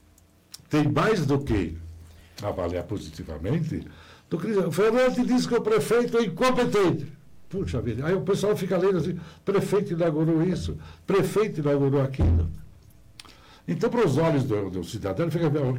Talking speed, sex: 140 wpm, male